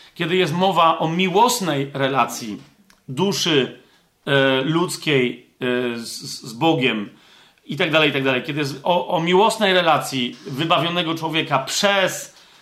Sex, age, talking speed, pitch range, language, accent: male, 40-59, 130 wpm, 140-185 Hz, Polish, native